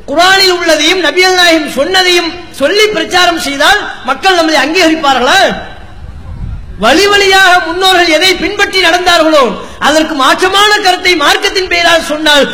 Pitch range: 285-370 Hz